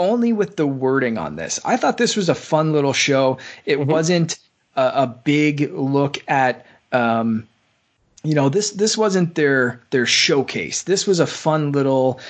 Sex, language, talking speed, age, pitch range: male, English, 170 wpm, 20-39, 130-170 Hz